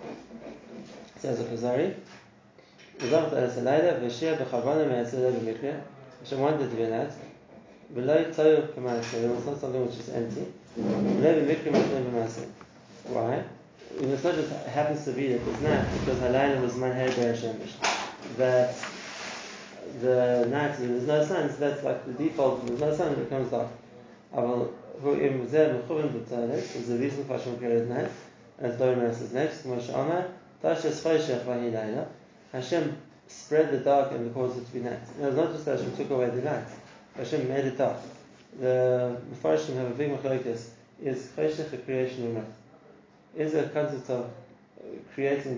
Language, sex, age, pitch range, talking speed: English, male, 30-49, 120-140 Hz, 125 wpm